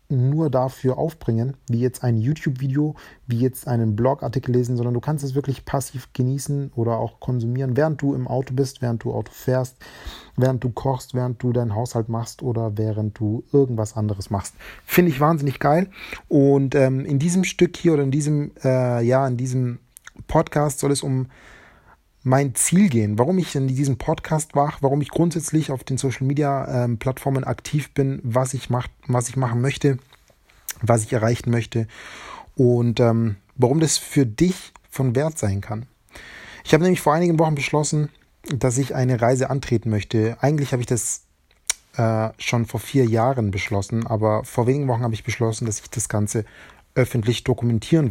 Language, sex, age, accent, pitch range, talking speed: German, male, 40-59, German, 115-140 Hz, 175 wpm